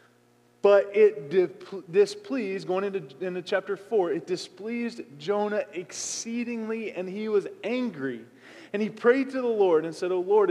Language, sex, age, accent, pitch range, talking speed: English, male, 20-39, American, 140-215 Hz, 150 wpm